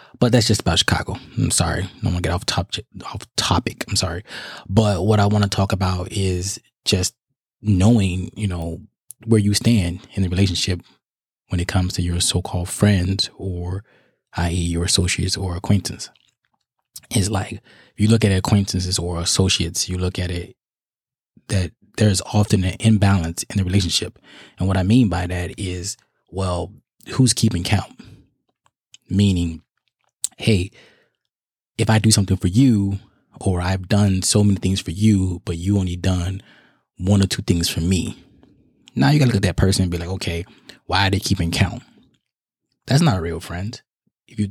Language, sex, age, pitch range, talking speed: English, male, 20-39, 90-105 Hz, 180 wpm